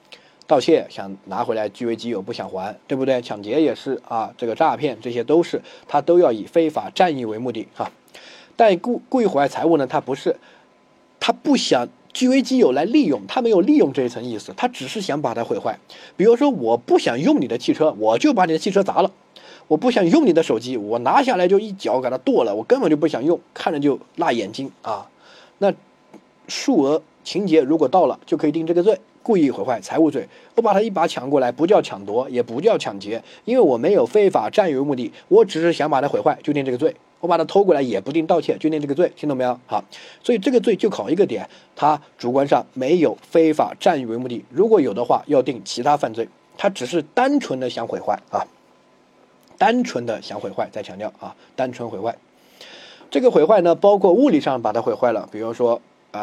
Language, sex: Chinese, male